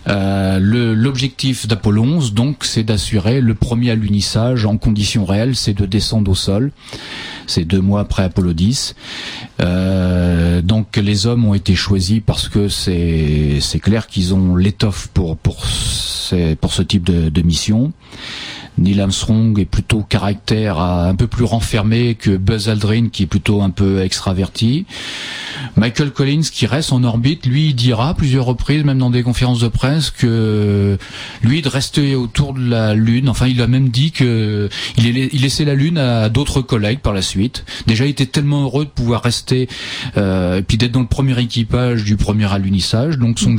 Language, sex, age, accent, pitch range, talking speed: French, male, 40-59, French, 100-125 Hz, 180 wpm